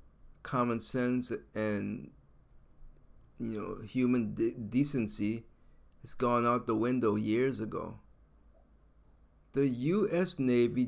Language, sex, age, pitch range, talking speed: English, male, 50-69, 105-145 Hz, 100 wpm